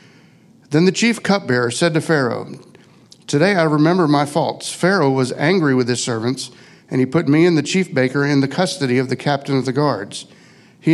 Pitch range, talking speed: 130-170 Hz, 195 wpm